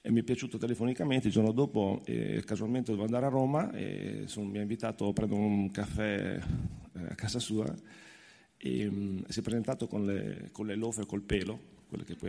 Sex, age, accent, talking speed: male, 40-59, native, 205 wpm